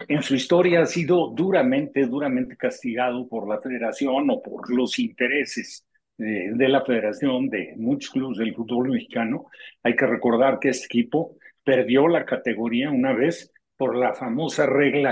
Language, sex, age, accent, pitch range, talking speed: Spanish, male, 50-69, Mexican, 125-185 Hz, 160 wpm